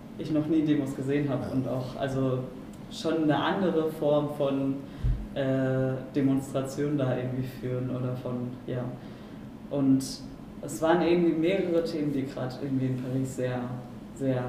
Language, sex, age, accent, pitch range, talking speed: German, female, 20-39, German, 130-145 Hz, 145 wpm